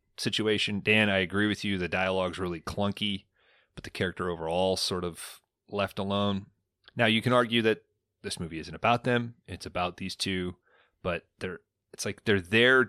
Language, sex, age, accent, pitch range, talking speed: English, male, 30-49, American, 90-110 Hz, 180 wpm